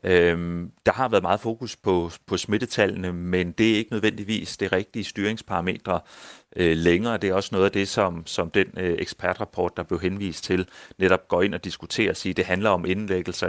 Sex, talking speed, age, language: male, 205 wpm, 30-49, Danish